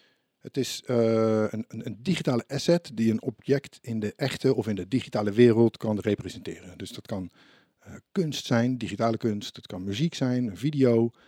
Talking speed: 180 wpm